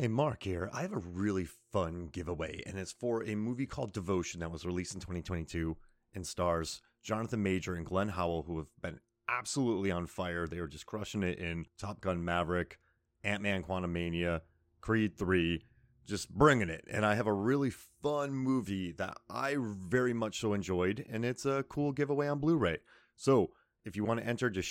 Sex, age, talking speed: male, 30-49, 185 wpm